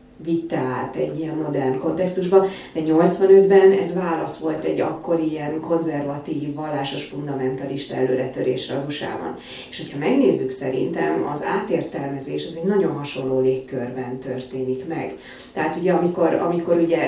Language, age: Hungarian, 30-49